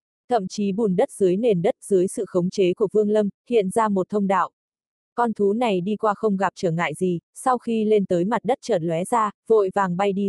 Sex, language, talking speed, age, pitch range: female, Vietnamese, 245 wpm, 20-39, 185-220 Hz